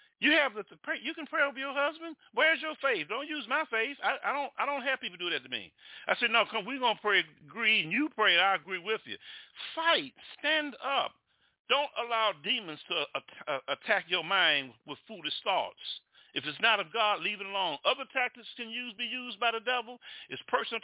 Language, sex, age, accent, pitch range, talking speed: English, male, 50-69, American, 170-240 Hz, 220 wpm